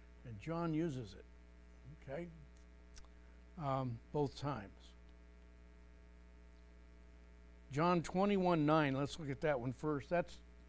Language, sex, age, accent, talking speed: English, male, 60-79, American, 105 wpm